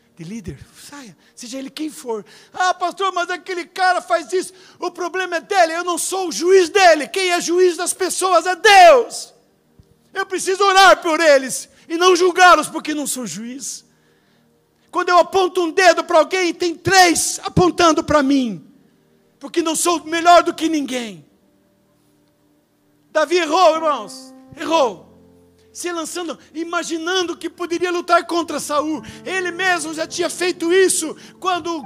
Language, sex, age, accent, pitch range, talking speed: Portuguese, male, 60-79, Brazilian, 300-355 Hz, 155 wpm